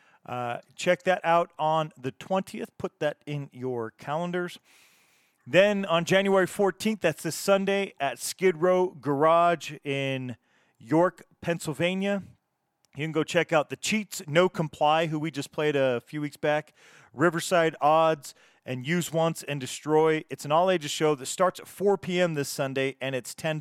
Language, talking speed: English, 165 wpm